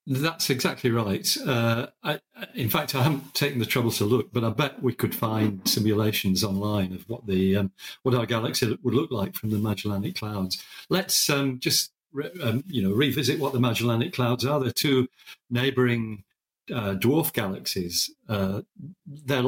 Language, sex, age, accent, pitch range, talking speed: English, male, 50-69, British, 110-140 Hz, 175 wpm